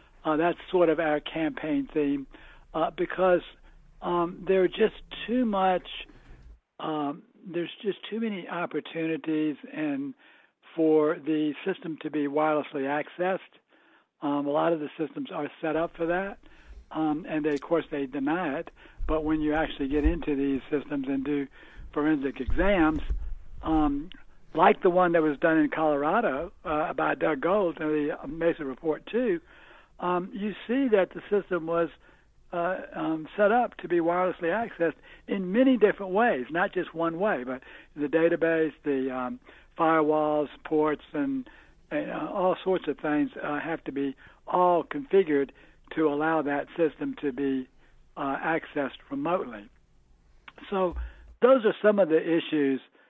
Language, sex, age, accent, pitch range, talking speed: English, male, 60-79, American, 150-185 Hz, 155 wpm